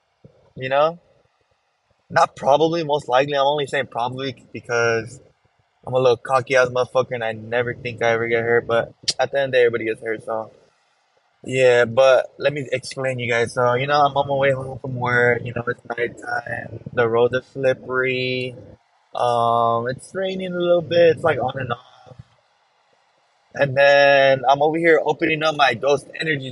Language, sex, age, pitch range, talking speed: English, male, 20-39, 125-155 Hz, 190 wpm